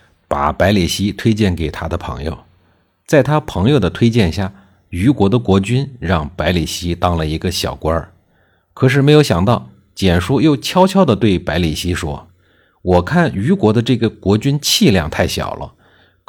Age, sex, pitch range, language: 50-69, male, 85-120 Hz, Chinese